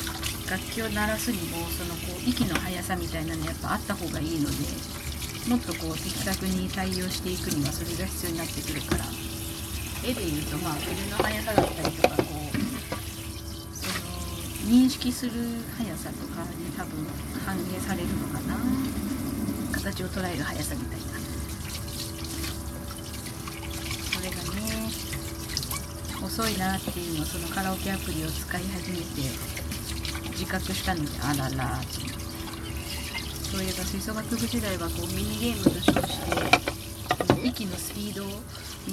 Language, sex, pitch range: Japanese, female, 80-110 Hz